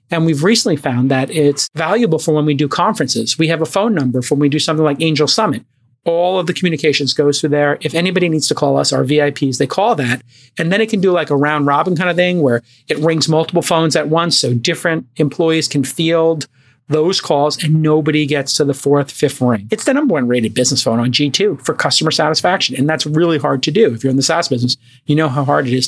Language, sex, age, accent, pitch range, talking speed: English, male, 40-59, American, 140-170 Hz, 250 wpm